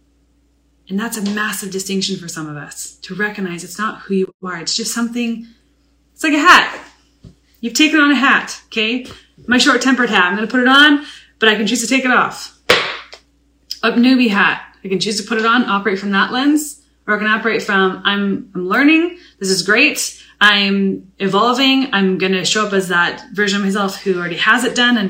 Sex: female